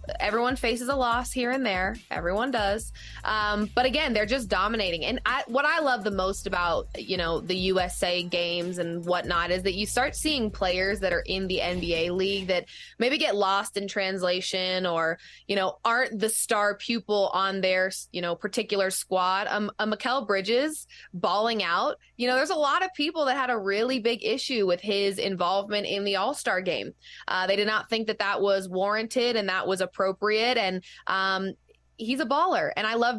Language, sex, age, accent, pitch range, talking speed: English, female, 20-39, American, 185-225 Hz, 195 wpm